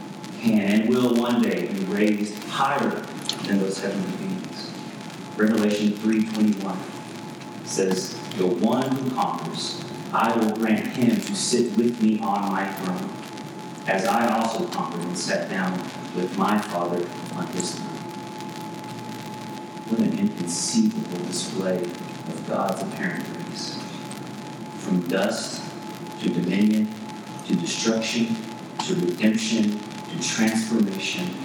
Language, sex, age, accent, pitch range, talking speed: English, male, 40-59, American, 95-115 Hz, 115 wpm